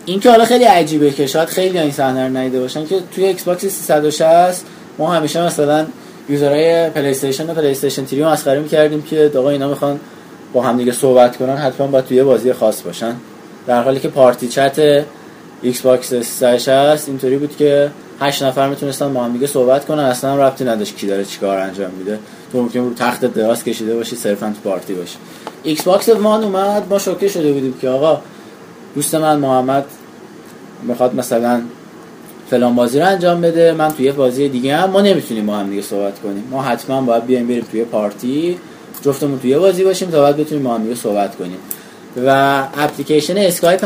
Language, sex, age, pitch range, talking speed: Persian, male, 20-39, 125-155 Hz, 185 wpm